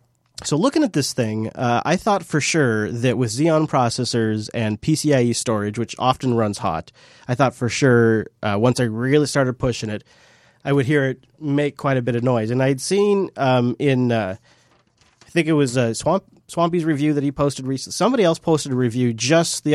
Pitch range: 115-145 Hz